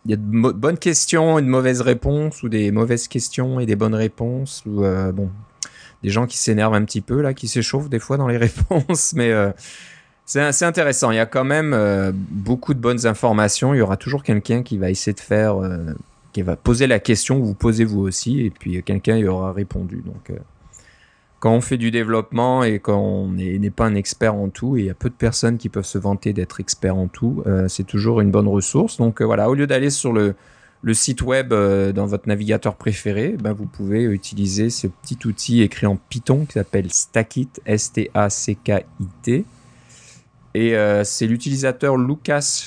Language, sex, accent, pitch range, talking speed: French, male, French, 100-125 Hz, 210 wpm